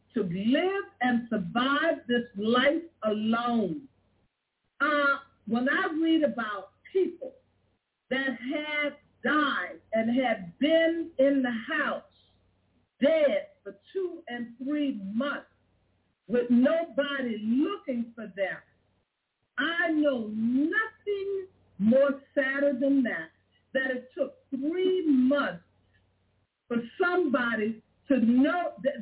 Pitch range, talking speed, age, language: 230-300 Hz, 105 wpm, 50-69, English